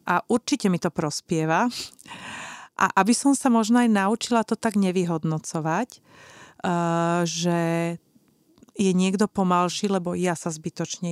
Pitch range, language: 175-215 Hz, Slovak